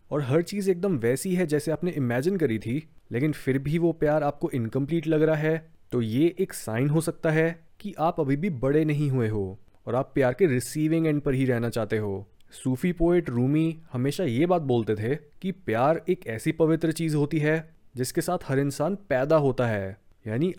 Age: 30-49